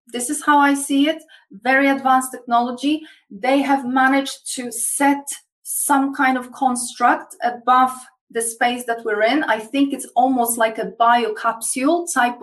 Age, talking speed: 20-39, 155 wpm